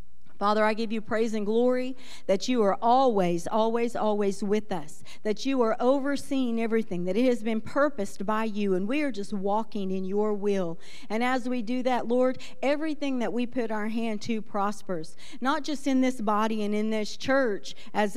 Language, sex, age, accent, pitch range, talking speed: English, female, 50-69, American, 205-255 Hz, 195 wpm